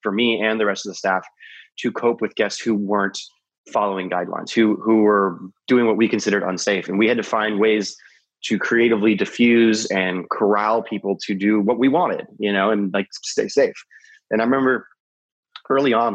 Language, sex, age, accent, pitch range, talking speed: English, male, 20-39, American, 100-115 Hz, 190 wpm